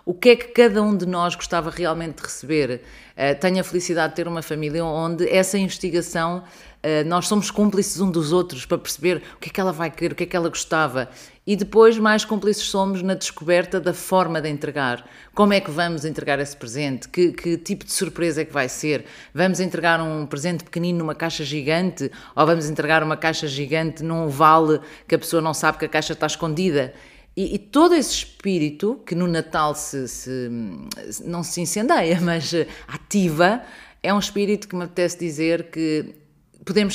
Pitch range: 150-185 Hz